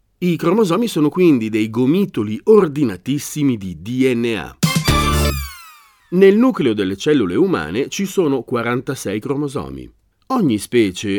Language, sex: Italian, male